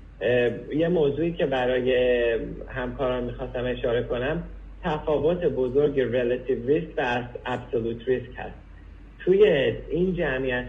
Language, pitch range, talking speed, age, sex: Persian, 125-150 Hz, 110 wpm, 50-69, male